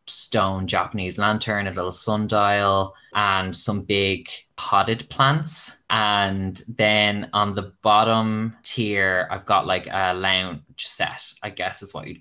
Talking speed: 140 wpm